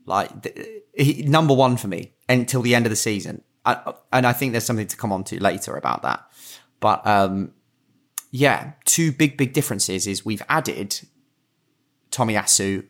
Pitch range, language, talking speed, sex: 105-125 Hz, English, 170 wpm, male